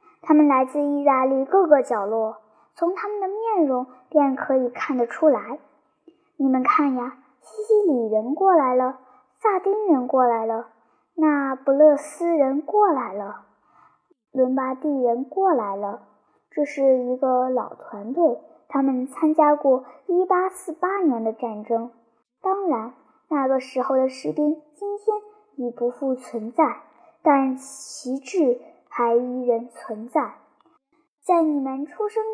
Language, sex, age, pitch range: Chinese, male, 10-29, 255-335 Hz